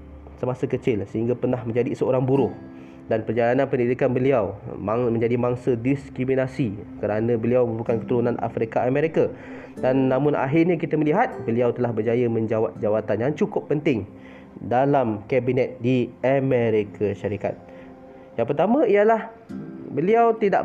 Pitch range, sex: 120-175 Hz, male